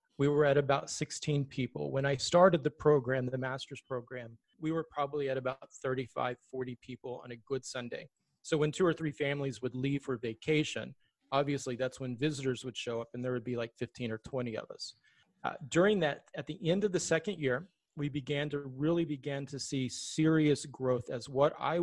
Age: 30-49